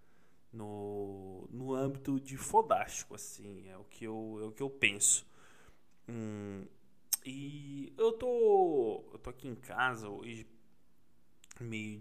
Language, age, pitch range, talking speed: Portuguese, 20-39, 105-135 Hz, 130 wpm